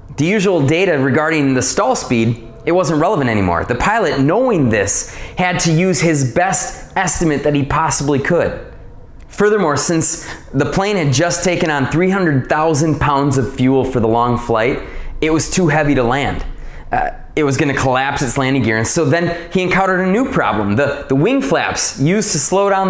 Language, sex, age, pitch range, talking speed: English, male, 20-39, 125-175 Hz, 190 wpm